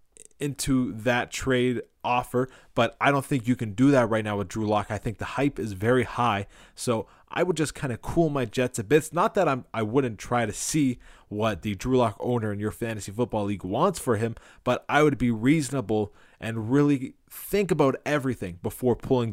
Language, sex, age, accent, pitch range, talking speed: English, male, 20-39, American, 115-140 Hz, 215 wpm